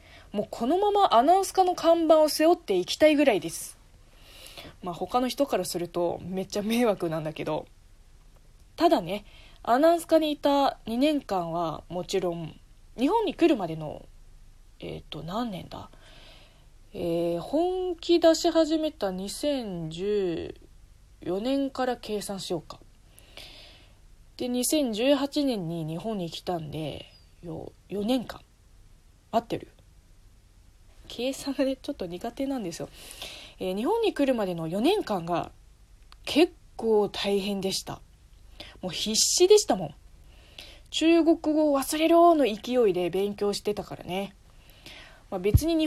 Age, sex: 20-39, female